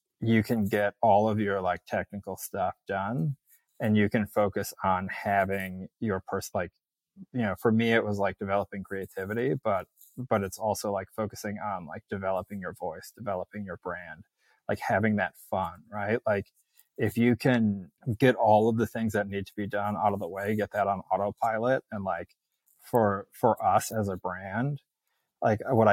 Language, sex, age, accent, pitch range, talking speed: English, male, 30-49, American, 100-115 Hz, 185 wpm